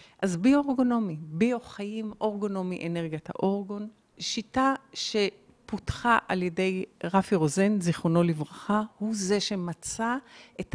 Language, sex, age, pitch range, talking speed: Hebrew, female, 50-69, 180-245 Hz, 100 wpm